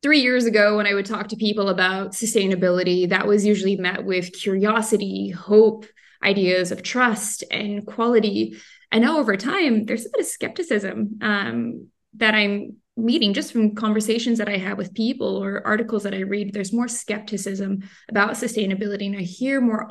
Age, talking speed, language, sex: 20-39, 175 wpm, English, female